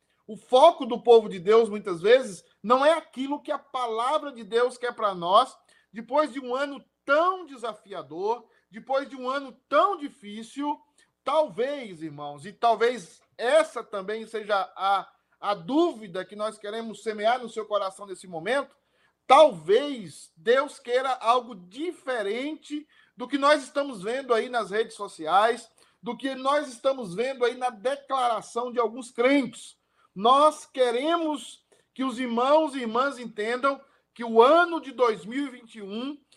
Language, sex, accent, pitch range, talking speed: Portuguese, male, Brazilian, 220-275 Hz, 145 wpm